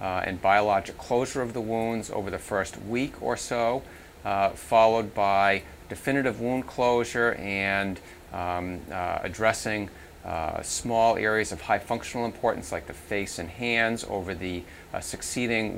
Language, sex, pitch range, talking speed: English, male, 90-110 Hz, 150 wpm